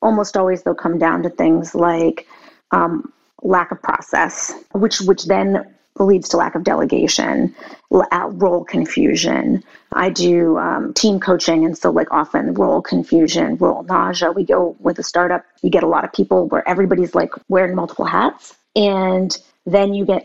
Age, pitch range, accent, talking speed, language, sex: 30-49, 175-210 Hz, American, 170 wpm, English, female